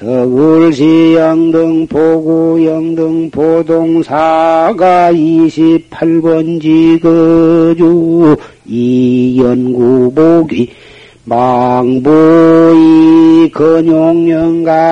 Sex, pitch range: male, 150-165 Hz